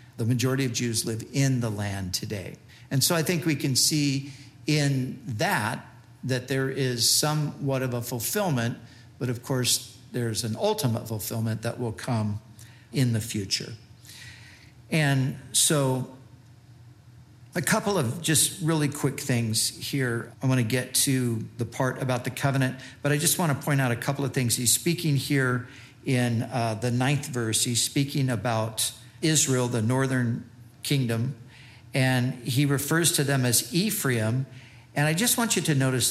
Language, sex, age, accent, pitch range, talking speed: English, male, 50-69, American, 120-140 Hz, 160 wpm